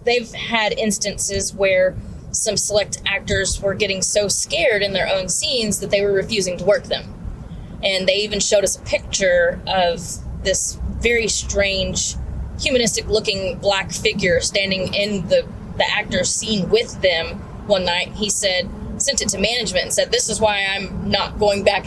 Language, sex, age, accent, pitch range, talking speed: English, female, 20-39, American, 195-235 Hz, 165 wpm